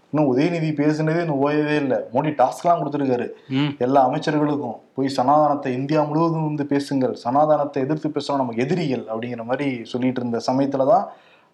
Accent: native